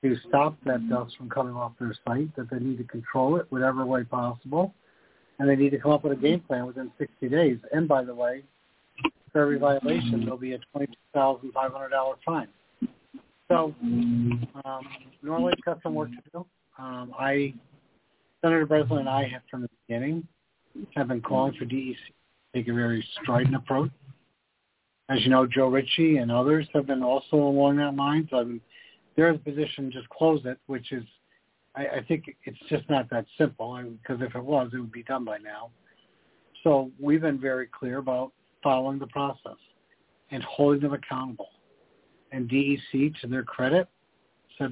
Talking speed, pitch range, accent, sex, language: 195 wpm, 125-145 Hz, American, male, English